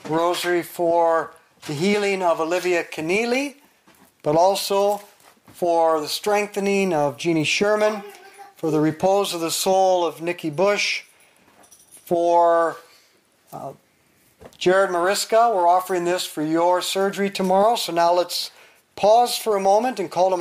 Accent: American